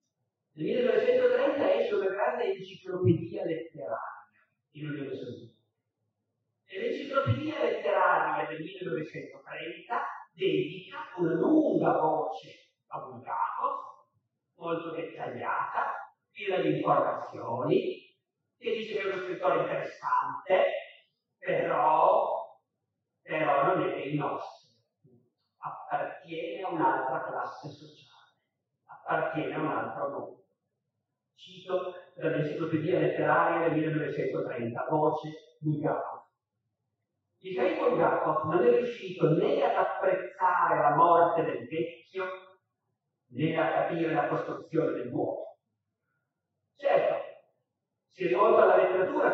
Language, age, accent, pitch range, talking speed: Italian, 40-59, native, 155-210 Hz, 105 wpm